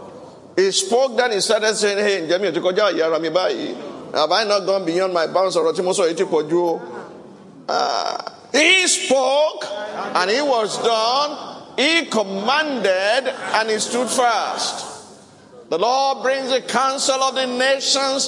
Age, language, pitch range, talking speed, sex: 50-69, English, 220-285 Hz, 115 wpm, male